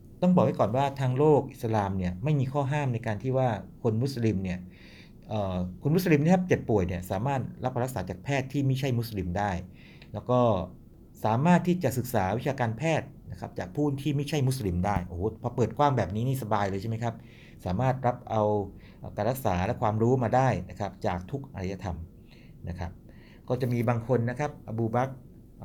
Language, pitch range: Thai, 100-130 Hz